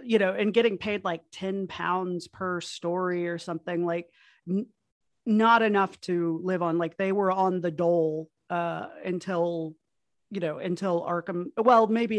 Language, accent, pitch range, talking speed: English, American, 170-200 Hz, 160 wpm